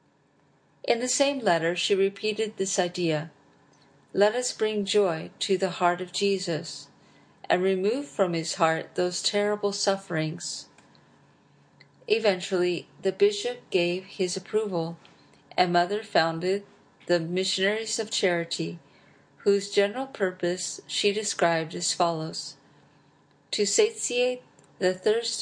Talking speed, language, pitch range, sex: 115 wpm, English, 165-205 Hz, female